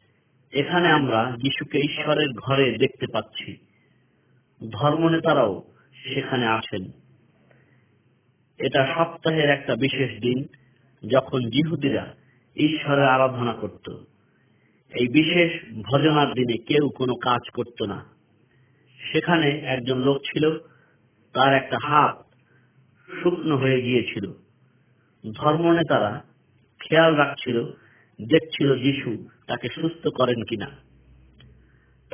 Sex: male